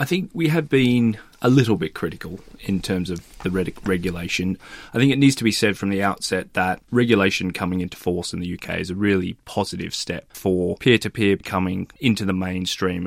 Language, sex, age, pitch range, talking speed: English, male, 20-39, 90-105 Hz, 200 wpm